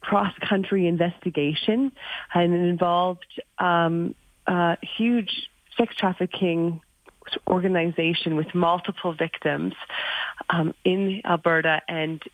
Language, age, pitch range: English, 30-49, 160-190 Hz